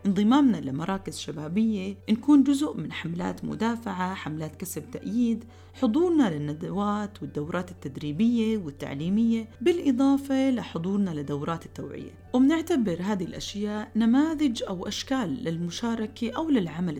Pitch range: 165-245 Hz